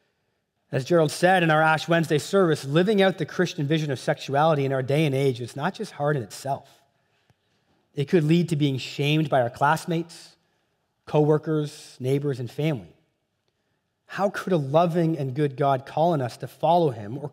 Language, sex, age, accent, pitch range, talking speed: English, male, 30-49, American, 140-175 Hz, 185 wpm